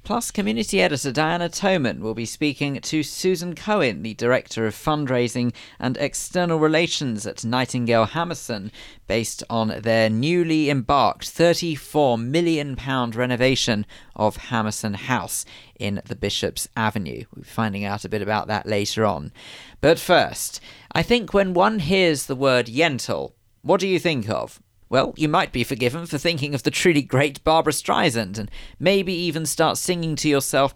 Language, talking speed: English, 160 wpm